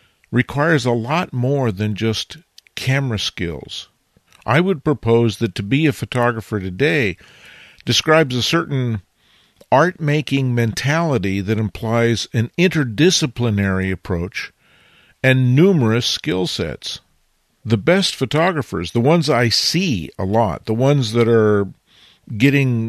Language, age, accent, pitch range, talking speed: English, 50-69, American, 100-130 Hz, 120 wpm